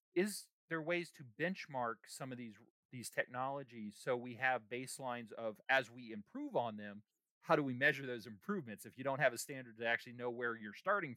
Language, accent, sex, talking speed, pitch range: English, American, male, 205 wpm, 115-150 Hz